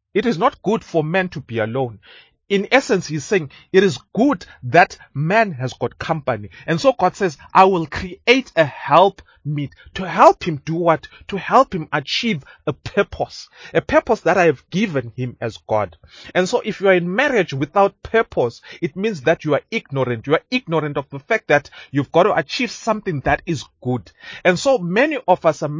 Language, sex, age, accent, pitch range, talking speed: English, male, 30-49, South African, 140-195 Hz, 200 wpm